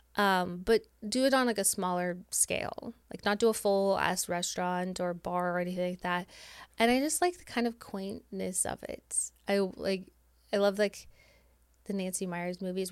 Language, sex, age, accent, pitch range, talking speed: English, female, 20-39, American, 180-205 Hz, 190 wpm